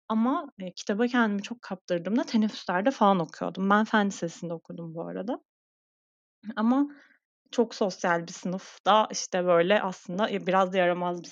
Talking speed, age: 135 wpm, 30-49